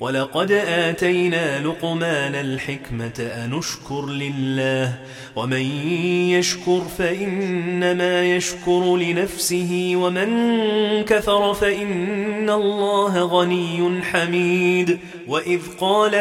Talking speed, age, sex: 70 wpm, 30-49, male